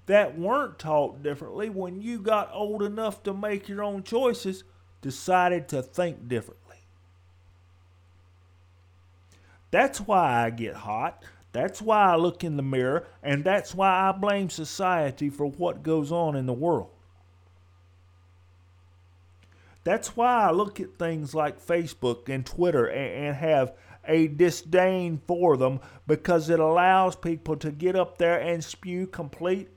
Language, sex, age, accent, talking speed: English, male, 40-59, American, 140 wpm